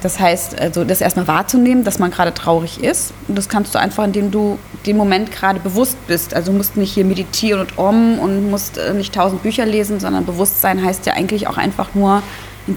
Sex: female